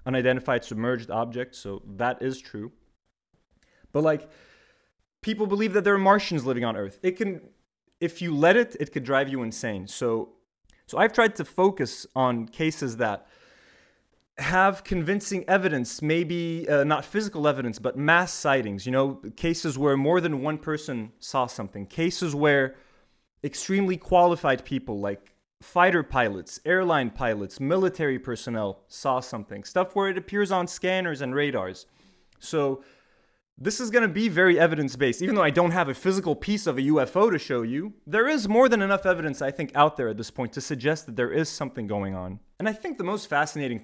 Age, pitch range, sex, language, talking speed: 20-39, 120-180 Hz, male, English, 180 wpm